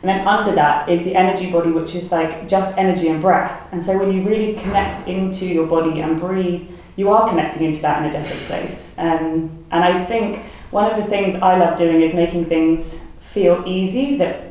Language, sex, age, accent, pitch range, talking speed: English, female, 20-39, British, 165-190 Hz, 205 wpm